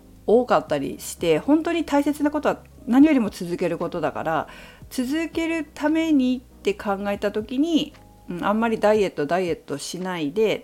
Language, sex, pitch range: Japanese, female, 165-245 Hz